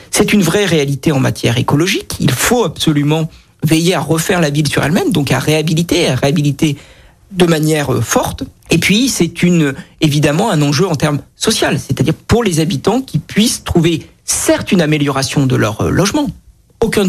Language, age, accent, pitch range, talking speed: French, 50-69, French, 140-180 Hz, 170 wpm